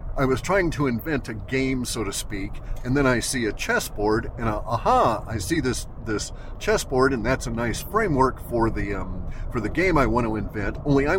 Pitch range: 110-135 Hz